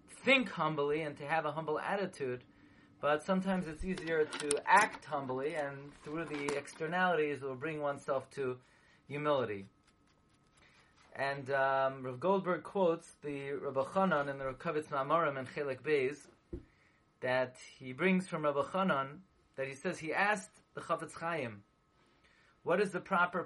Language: English